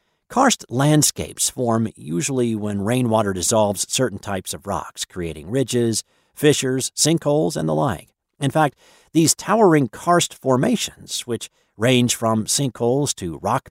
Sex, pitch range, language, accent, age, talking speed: male, 100-140 Hz, English, American, 50-69, 130 wpm